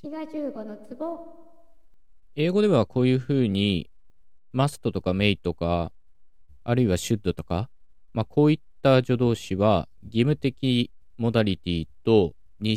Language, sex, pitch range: Japanese, male, 85-125 Hz